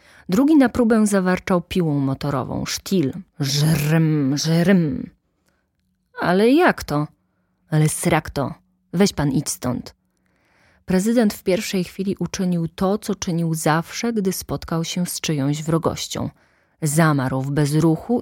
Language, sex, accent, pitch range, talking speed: Polish, female, native, 165-230 Hz, 120 wpm